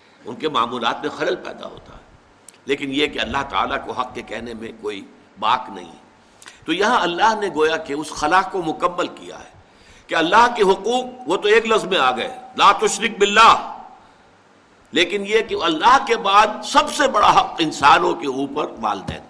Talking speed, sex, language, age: 195 wpm, male, Urdu, 60-79